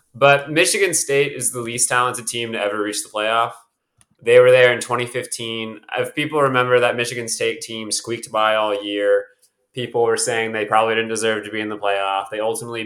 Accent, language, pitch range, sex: American, English, 110-145 Hz, male